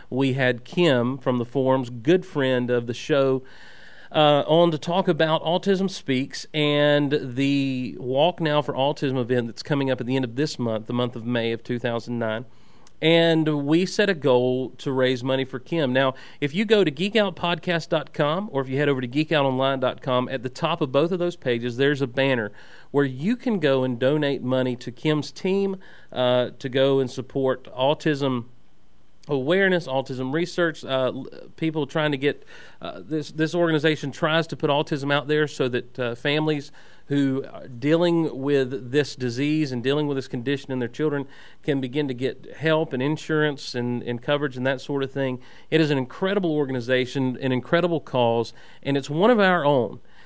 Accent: American